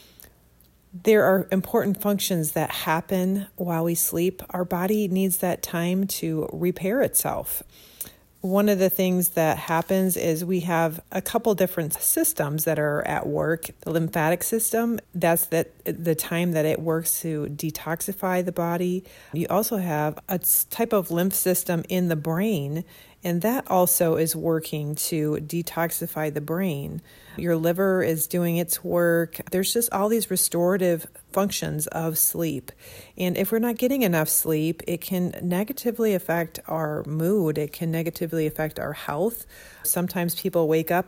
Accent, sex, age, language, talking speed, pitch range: American, female, 40-59, English, 155 wpm, 160-190 Hz